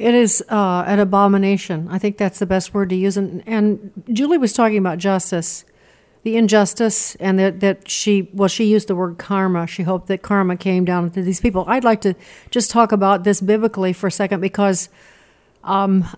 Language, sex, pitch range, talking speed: English, female, 185-215 Hz, 200 wpm